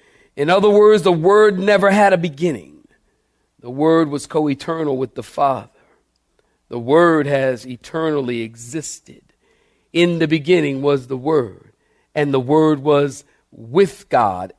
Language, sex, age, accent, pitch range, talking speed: English, male, 50-69, American, 130-185 Hz, 135 wpm